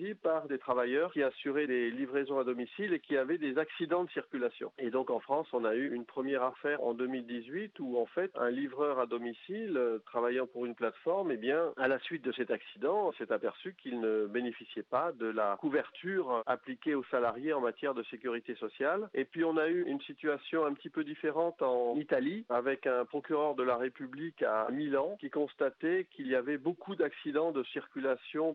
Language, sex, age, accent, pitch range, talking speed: French, male, 40-59, French, 120-165 Hz, 200 wpm